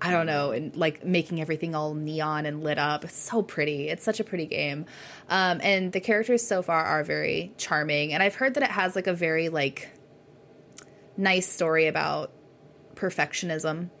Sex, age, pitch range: female, 20-39, 155-210 Hz